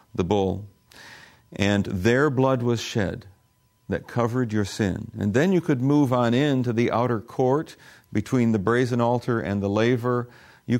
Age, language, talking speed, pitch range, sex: 50-69, English, 160 wpm, 100-120 Hz, male